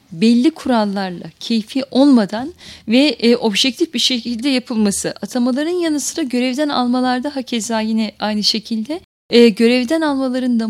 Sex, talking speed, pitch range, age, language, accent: female, 135 wpm, 225-275 Hz, 10-29, Turkish, native